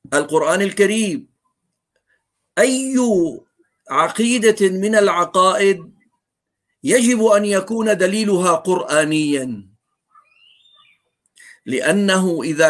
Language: Arabic